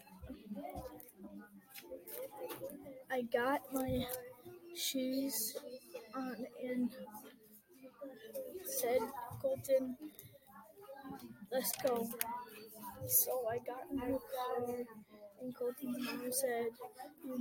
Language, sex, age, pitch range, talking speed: English, female, 20-39, 240-275 Hz, 70 wpm